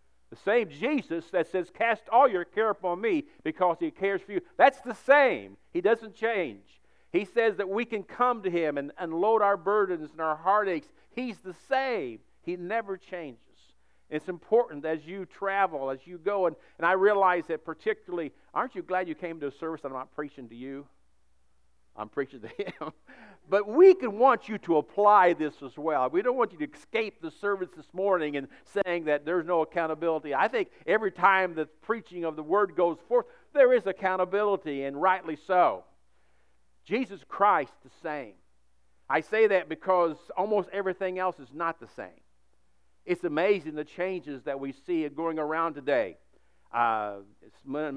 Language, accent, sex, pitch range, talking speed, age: English, American, male, 145-205 Hz, 180 wpm, 50-69